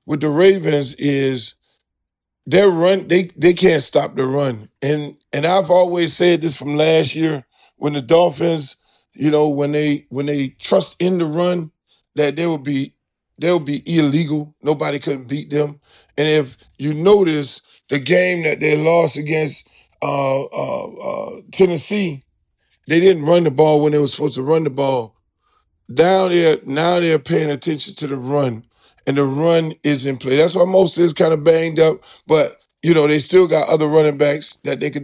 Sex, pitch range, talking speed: male, 145-175 Hz, 185 wpm